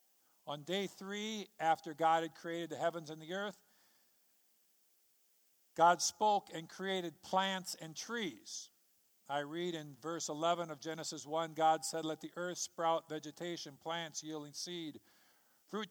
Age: 50-69